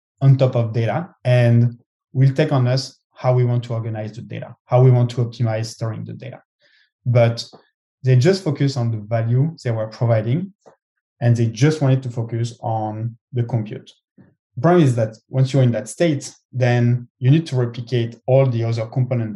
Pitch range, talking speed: 115-130 Hz, 185 wpm